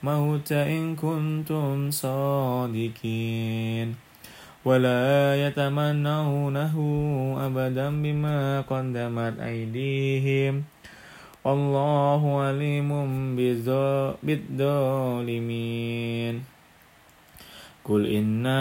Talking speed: 55 wpm